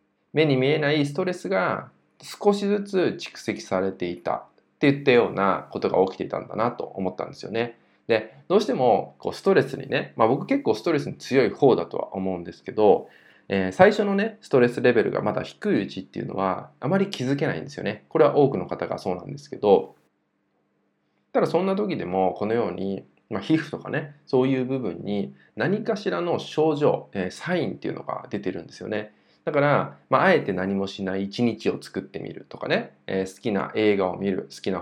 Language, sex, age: Japanese, male, 20-39